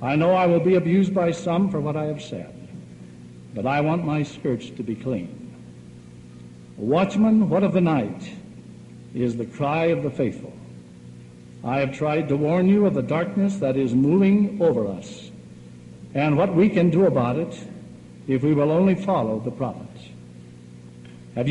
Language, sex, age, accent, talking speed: English, male, 60-79, American, 170 wpm